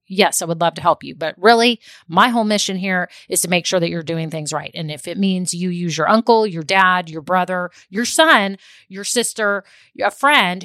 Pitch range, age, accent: 180-235 Hz, 30-49, American